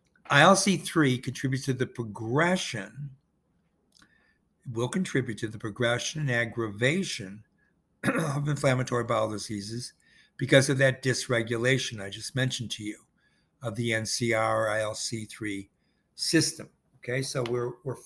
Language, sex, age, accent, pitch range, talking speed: English, male, 60-79, American, 120-160 Hz, 115 wpm